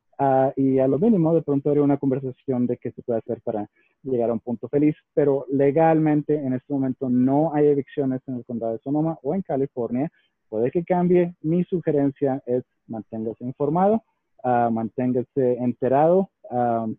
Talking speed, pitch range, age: 175 wpm, 130-160 Hz, 30-49